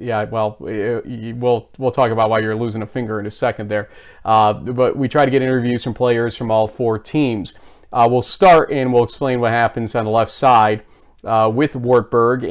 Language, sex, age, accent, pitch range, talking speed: English, male, 30-49, American, 115-145 Hz, 205 wpm